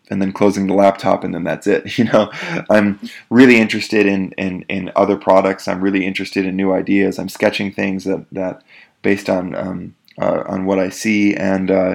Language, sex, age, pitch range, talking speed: English, male, 20-39, 95-105 Hz, 195 wpm